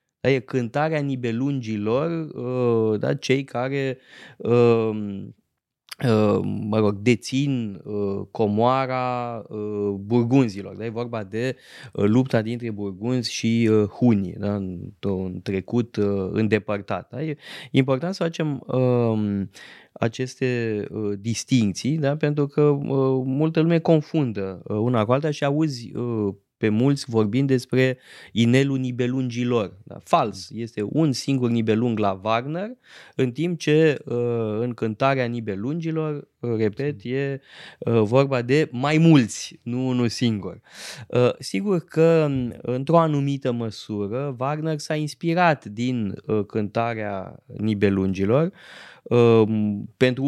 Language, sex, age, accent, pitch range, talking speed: Romanian, male, 20-39, native, 110-135 Hz, 100 wpm